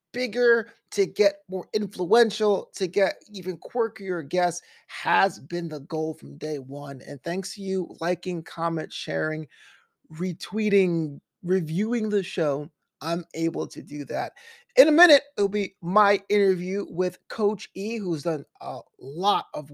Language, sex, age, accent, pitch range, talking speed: English, male, 30-49, American, 165-210 Hz, 145 wpm